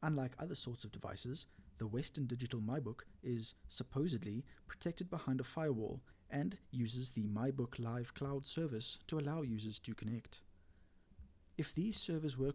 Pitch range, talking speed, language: 110-145 Hz, 150 wpm, English